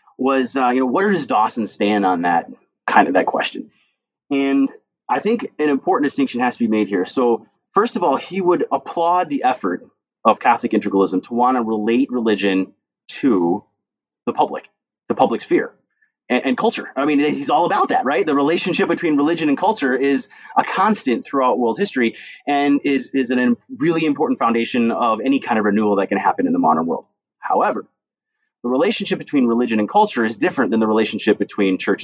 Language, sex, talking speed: English, male, 195 wpm